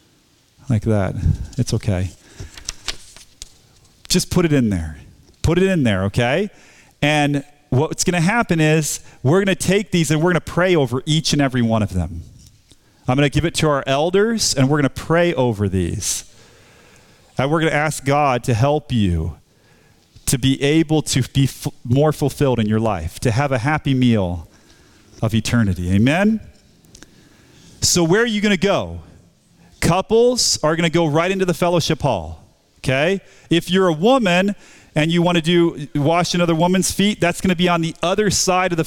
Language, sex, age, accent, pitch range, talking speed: English, male, 40-59, American, 115-170 Hz, 185 wpm